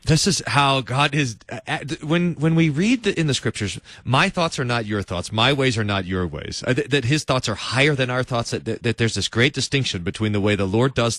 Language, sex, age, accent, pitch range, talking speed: English, male, 30-49, American, 115-180 Hz, 260 wpm